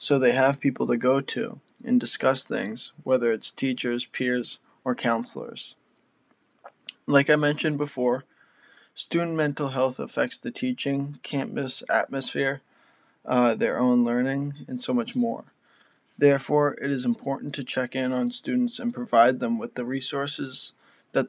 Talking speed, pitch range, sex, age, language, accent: 145 wpm, 120-155 Hz, male, 10-29, English, American